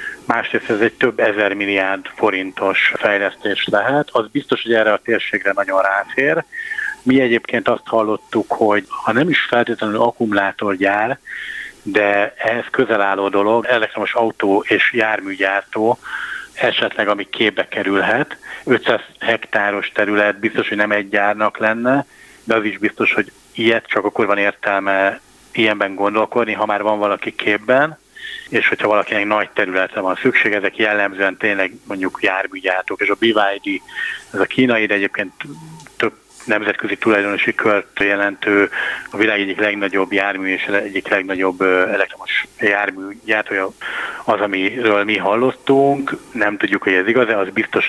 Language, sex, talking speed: Hungarian, male, 140 wpm